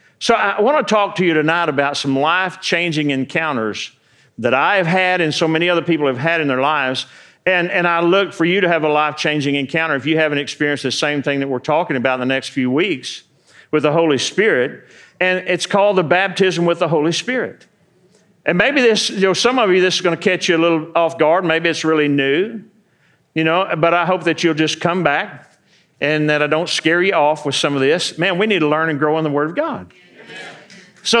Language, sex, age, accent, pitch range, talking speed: English, male, 50-69, American, 155-195 Hz, 235 wpm